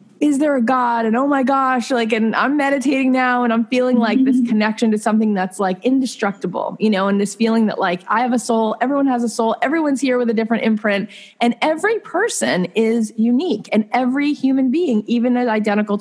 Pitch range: 200-245 Hz